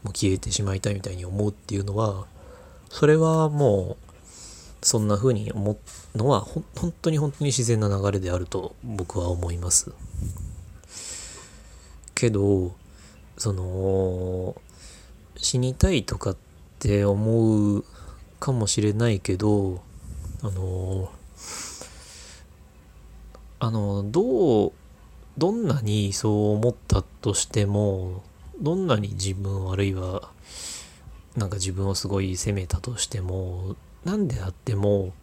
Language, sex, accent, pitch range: Japanese, male, native, 90-115 Hz